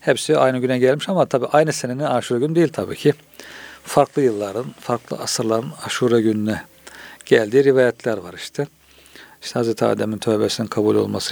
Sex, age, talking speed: male, 50-69, 155 wpm